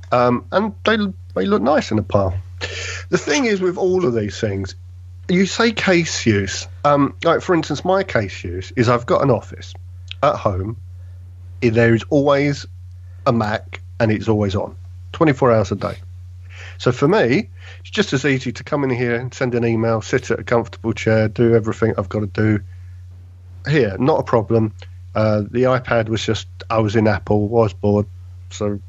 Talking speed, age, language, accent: 185 wpm, 50-69, English, British